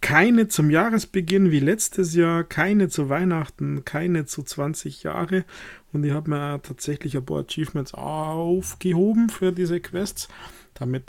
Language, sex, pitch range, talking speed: German, male, 125-165 Hz, 140 wpm